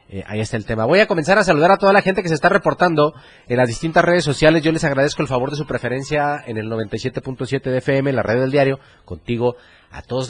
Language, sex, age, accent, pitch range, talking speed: Spanish, male, 30-49, Mexican, 90-120 Hz, 255 wpm